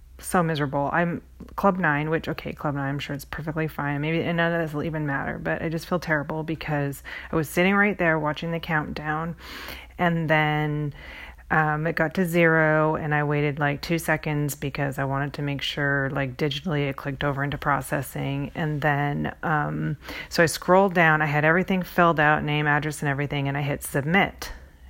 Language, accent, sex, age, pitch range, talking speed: English, American, female, 30-49, 140-170 Hz, 195 wpm